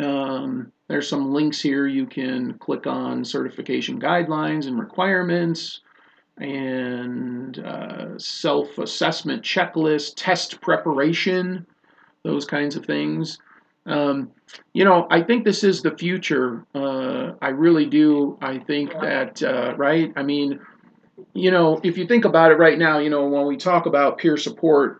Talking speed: 145 wpm